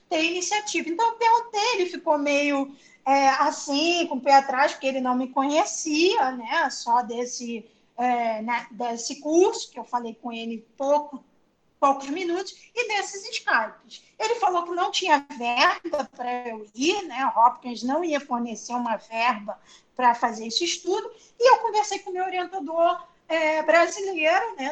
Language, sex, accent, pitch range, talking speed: Portuguese, female, Brazilian, 275-380 Hz, 165 wpm